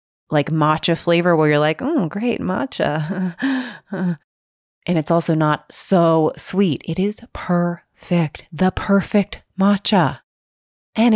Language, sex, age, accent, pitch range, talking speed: English, female, 30-49, American, 155-210 Hz, 120 wpm